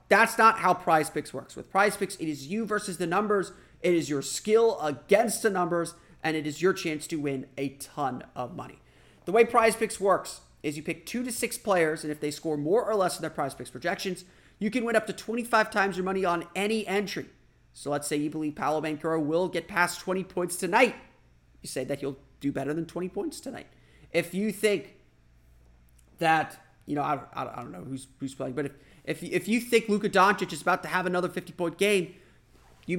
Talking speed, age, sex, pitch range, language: 220 wpm, 30-49, male, 150-195 Hz, English